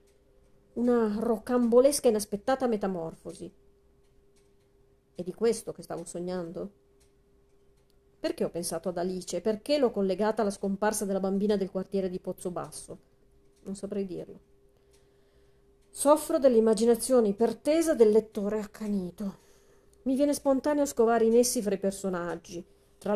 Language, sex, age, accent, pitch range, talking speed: Italian, female, 40-59, native, 175-230 Hz, 120 wpm